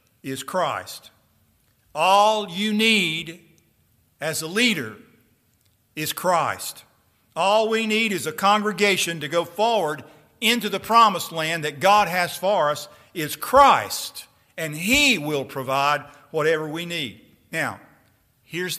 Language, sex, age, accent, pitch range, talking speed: English, male, 50-69, American, 140-205 Hz, 125 wpm